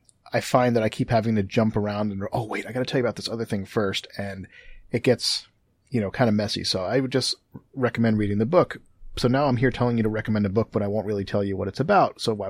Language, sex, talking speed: English, male, 285 wpm